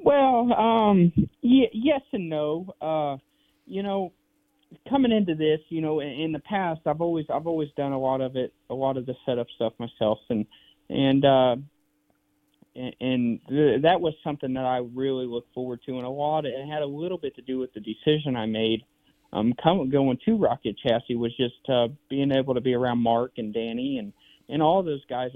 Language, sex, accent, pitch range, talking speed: English, male, American, 120-150 Hz, 205 wpm